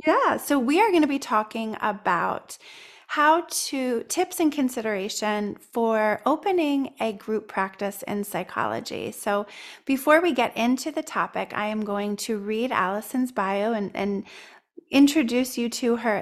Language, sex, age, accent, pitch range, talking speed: English, female, 30-49, American, 210-270 Hz, 150 wpm